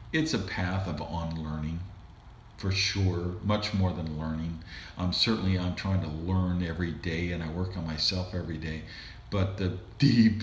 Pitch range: 90-115 Hz